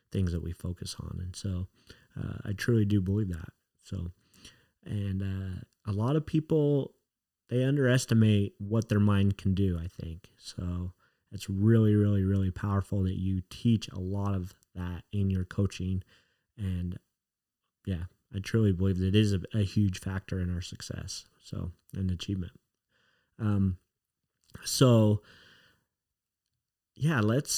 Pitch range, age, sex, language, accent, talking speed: 95-115 Hz, 30-49, male, English, American, 145 wpm